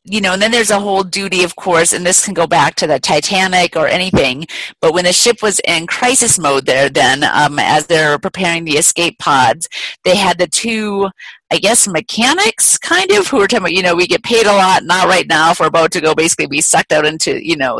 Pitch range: 160-210 Hz